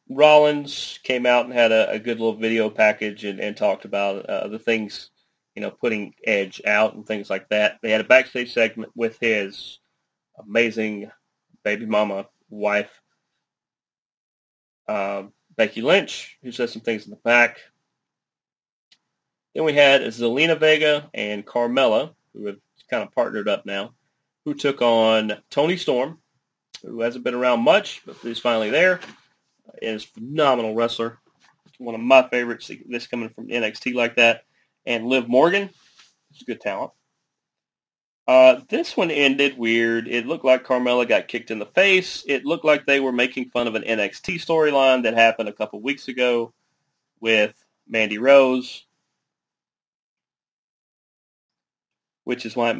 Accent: American